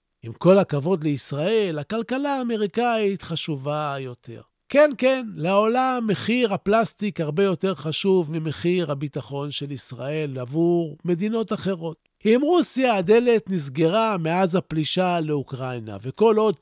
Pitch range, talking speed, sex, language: 155-230 Hz, 115 wpm, male, Hebrew